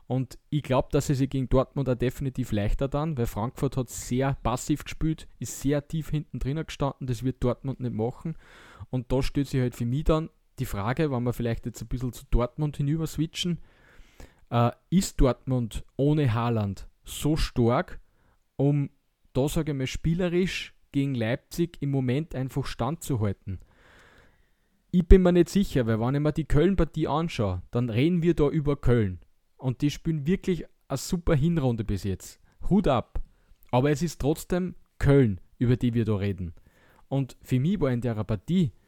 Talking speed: 175 wpm